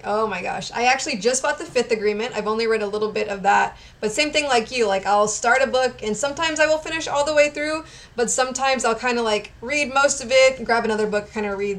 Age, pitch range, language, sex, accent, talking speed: 20-39, 200-235 Hz, English, female, American, 270 wpm